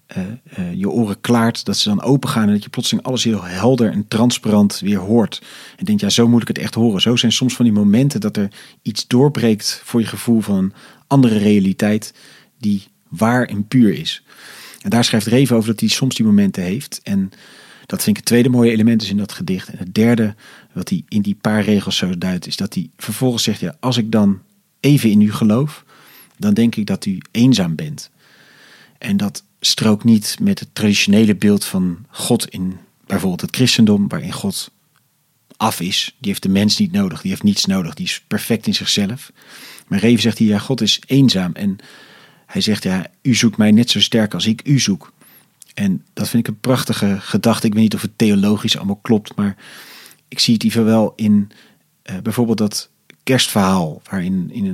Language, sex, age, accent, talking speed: Dutch, male, 40-59, Dutch, 205 wpm